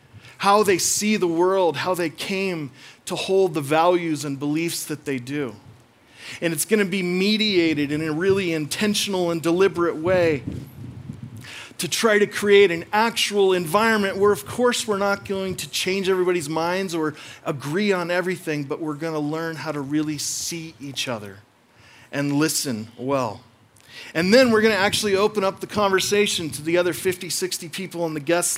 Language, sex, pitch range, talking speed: English, male, 140-185 Hz, 175 wpm